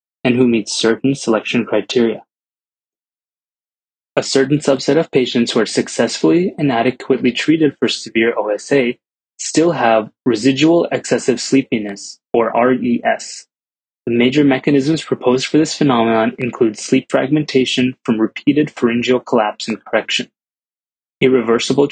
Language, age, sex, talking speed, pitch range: English, 20-39, male, 120 wpm, 115-140 Hz